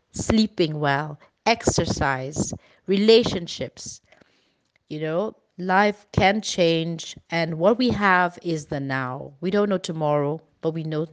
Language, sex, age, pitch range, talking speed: English, female, 30-49, 165-220 Hz, 125 wpm